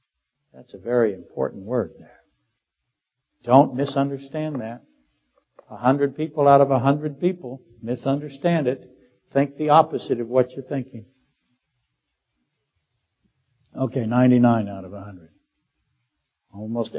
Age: 60-79